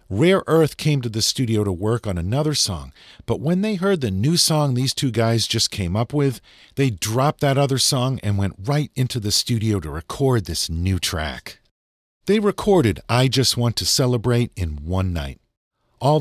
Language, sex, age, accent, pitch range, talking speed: English, male, 50-69, American, 90-135 Hz, 195 wpm